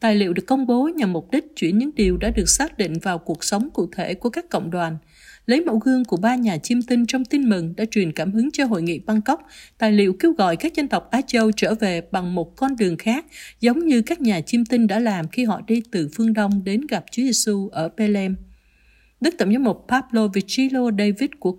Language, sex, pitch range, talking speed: Vietnamese, female, 185-245 Hz, 240 wpm